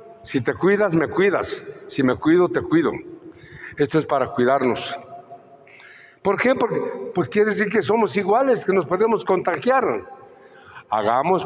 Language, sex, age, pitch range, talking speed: Spanish, male, 60-79, 160-245 Hz, 145 wpm